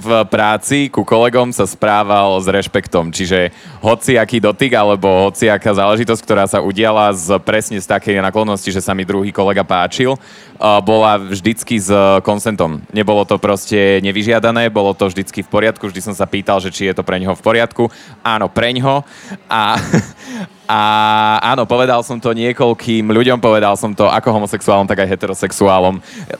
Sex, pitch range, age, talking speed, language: male, 100-120 Hz, 20-39, 165 wpm, Slovak